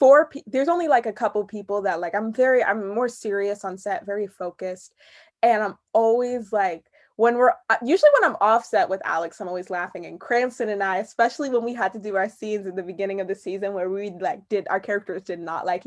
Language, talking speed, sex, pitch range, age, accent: English, 230 wpm, female, 190-230 Hz, 20-39, American